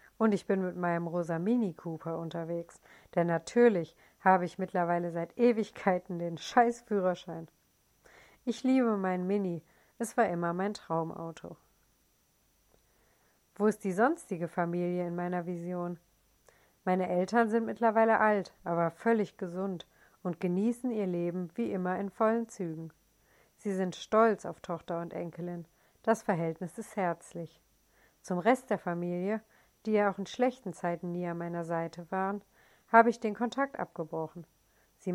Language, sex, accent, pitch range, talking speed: German, female, German, 170-215 Hz, 140 wpm